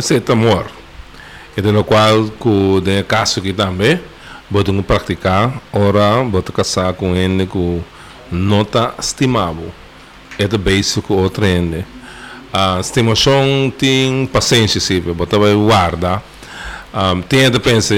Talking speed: 135 wpm